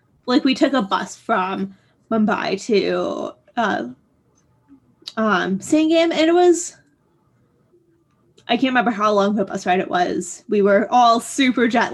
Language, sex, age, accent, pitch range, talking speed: English, female, 20-39, American, 200-280 Hz, 145 wpm